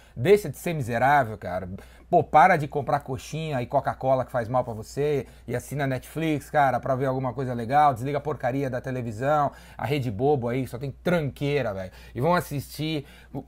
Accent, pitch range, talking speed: Brazilian, 130-165 Hz, 190 wpm